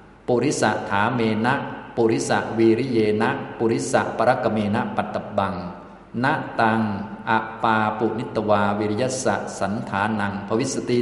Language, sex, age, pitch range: Thai, male, 20-39, 100-120 Hz